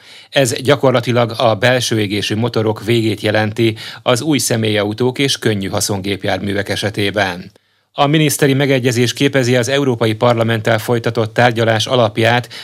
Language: Hungarian